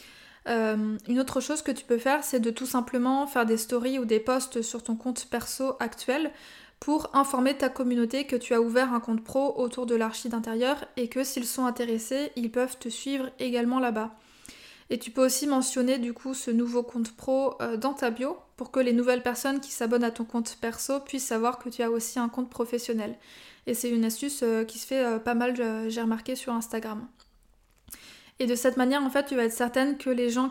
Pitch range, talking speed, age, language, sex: 240-270 Hz, 220 wpm, 20-39, French, female